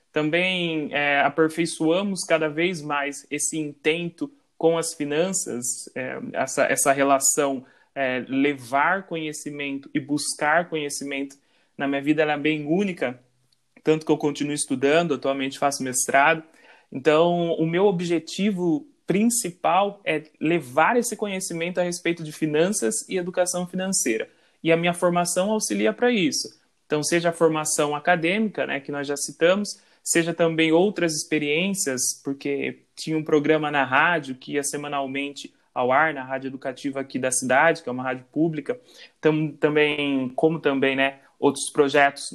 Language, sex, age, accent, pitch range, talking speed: Portuguese, male, 30-49, Brazilian, 140-170 Hz, 140 wpm